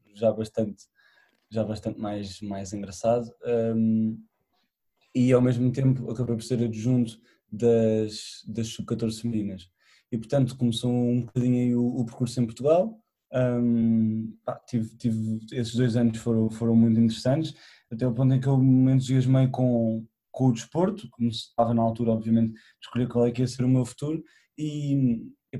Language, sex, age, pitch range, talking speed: Portuguese, male, 20-39, 110-130 Hz, 160 wpm